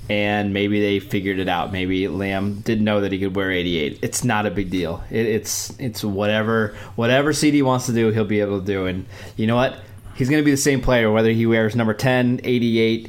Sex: male